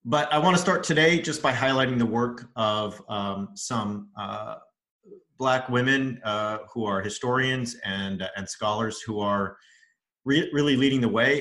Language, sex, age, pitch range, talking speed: English, male, 30-49, 100-125 Hz, 170 wpm